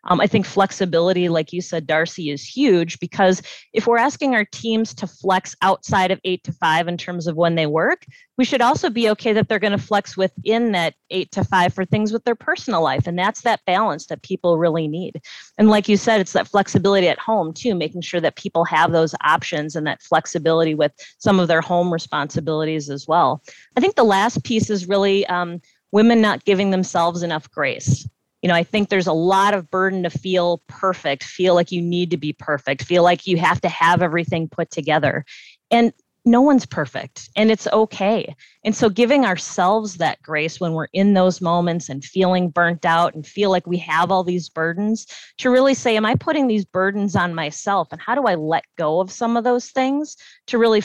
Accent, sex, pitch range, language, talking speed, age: American, female, 165-210 Hz, English, 210 wpm, 30-49